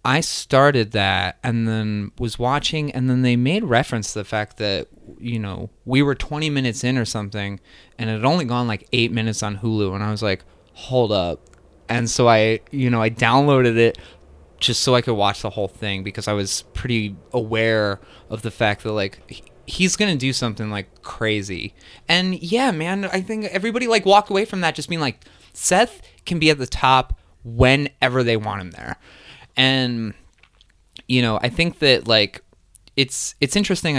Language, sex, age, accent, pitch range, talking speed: English, male, 20-39, American, 105-130 Hz, 190 wpm